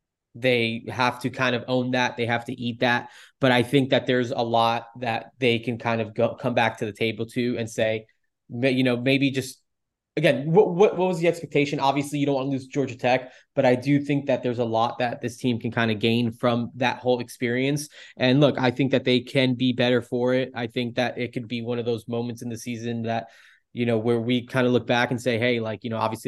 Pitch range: 115-125 Hz